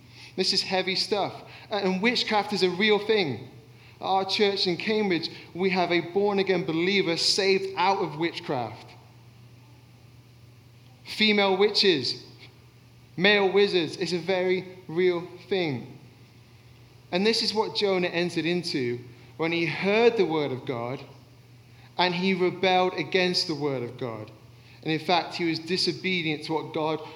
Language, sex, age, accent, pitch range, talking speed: English, male, 30-49, British, 120-190 Hz, 140 wpm